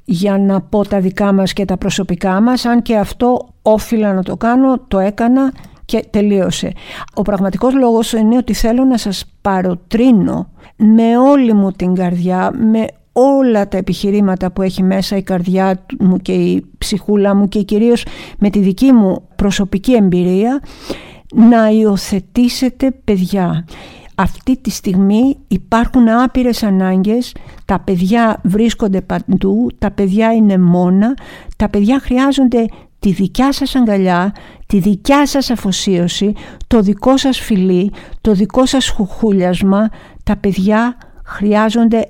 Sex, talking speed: female, 135 wpm